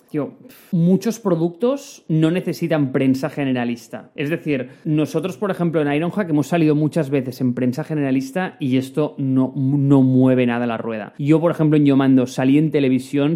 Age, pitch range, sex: 30-49, 130-160 Hz, male